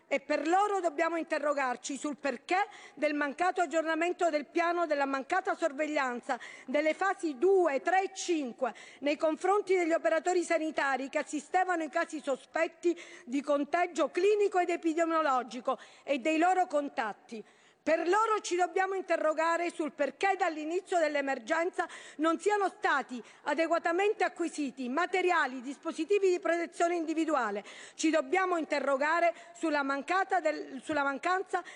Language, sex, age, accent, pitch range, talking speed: Italian, female, 50-69, native, 295-360 Hz, 125 wpm